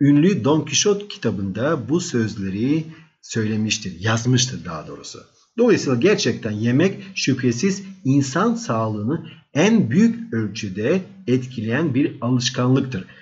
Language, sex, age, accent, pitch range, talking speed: Turkish, male, 50-69, native, 115-170 Hz, 100 wpm